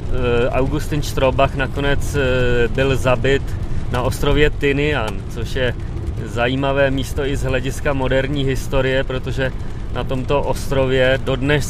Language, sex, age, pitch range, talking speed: Czech, male, 30-49, 115-135 Hz, 115 wpm